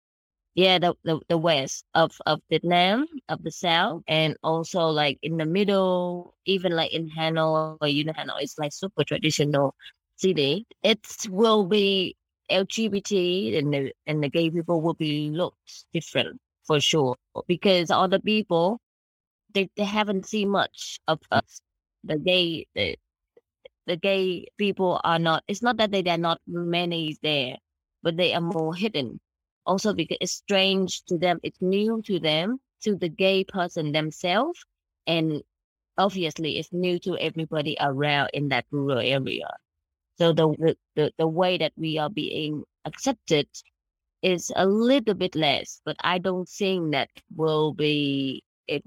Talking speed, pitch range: 155 wpm, 150-185 Hz